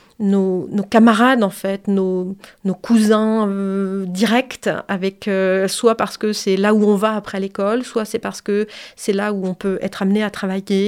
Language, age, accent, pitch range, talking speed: French, 30-49, French, 195-225 Hz, 195 wpm